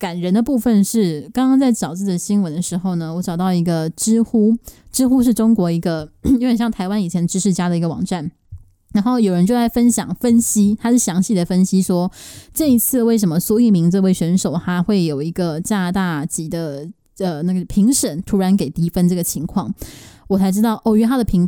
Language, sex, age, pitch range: Chinese, female, 20-39, 175-220 Hz